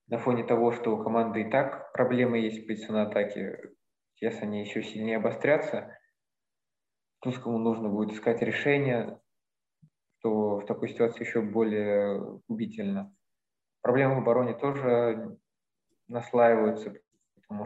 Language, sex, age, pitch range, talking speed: Russian, male, 20-39, 110-125 Hz, 120 wpm